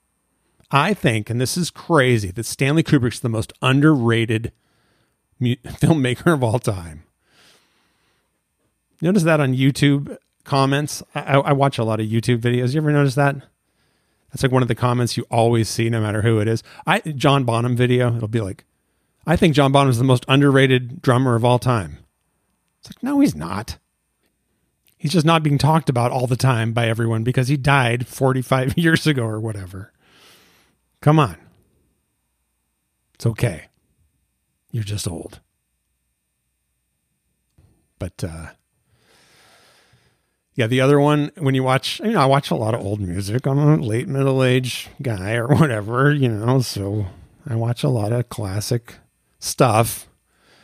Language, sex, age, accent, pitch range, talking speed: English, male, 40-59, American, 105-140 Hz, 160 wpm